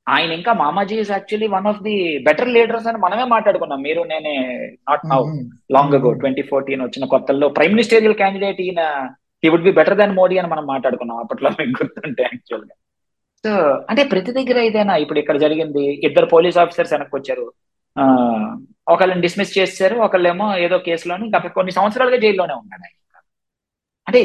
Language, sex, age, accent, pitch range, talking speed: Telugu, male, 20-39, native, 150-210 Hz, 150 wpm